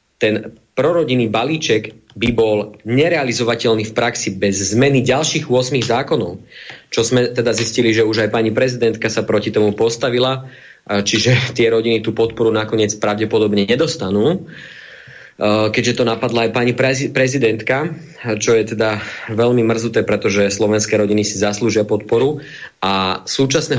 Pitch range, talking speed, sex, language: 105-120 Hz, 135 wpm, male, Slovak